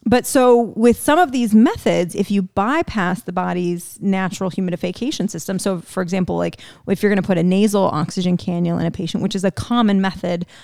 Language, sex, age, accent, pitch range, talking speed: English, female, 30-49, American, 180-220 Hz, 205 wpm